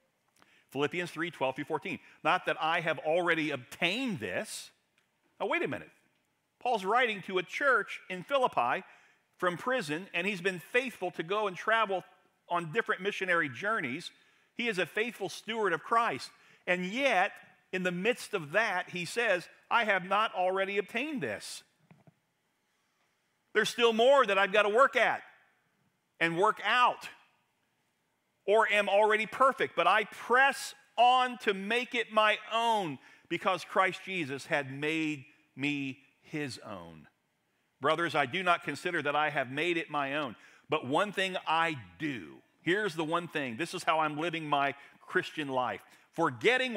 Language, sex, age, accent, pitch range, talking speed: English, male, 50-69, American, 150-215 Hz, 155 wpm